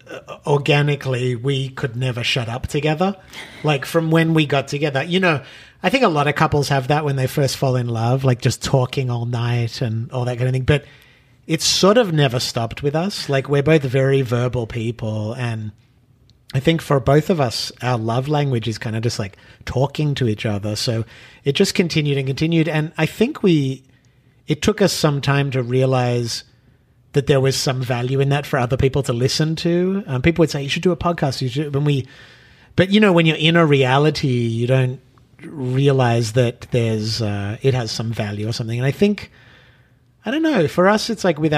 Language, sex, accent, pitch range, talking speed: English, male, Australian, 125-150 Hz, 210 wpm